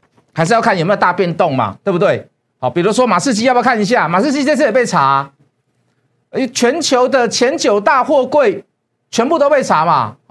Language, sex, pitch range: Chinese, male, 180-280 Hz